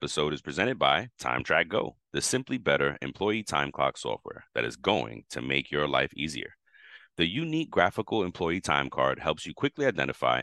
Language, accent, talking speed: English, American, 180 wpm